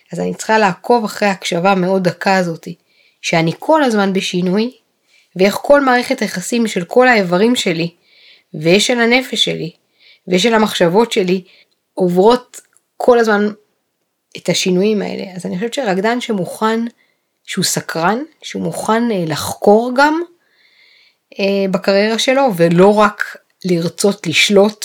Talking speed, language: 125 wpm, Hebrew